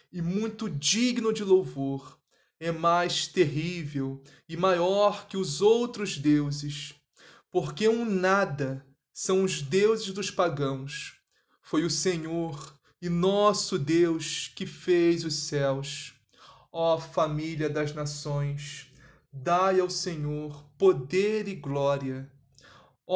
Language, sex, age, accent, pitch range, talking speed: Portuguese, male, 20-39, Brazilian, 145-185 Hz, 115 wpm